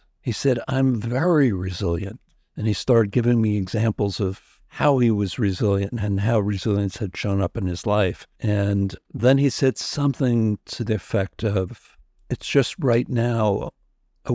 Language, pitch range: English, 105-135 Hz